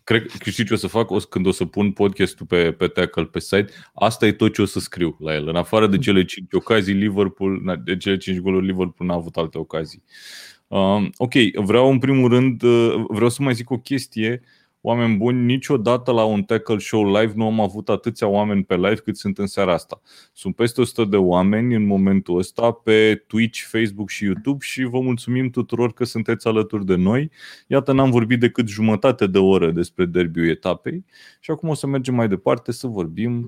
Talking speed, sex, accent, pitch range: 205 wpm, male, native, 95-120 Hz